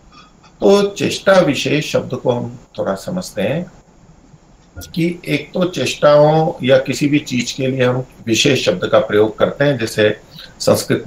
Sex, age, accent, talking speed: male, 50-69, native, 150 wpm